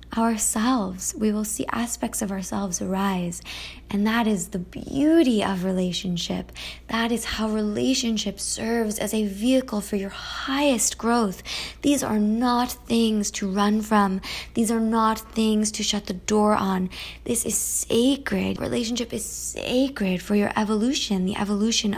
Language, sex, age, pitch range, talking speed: English, female, 20-39, 190-225 Hz, 145 wpm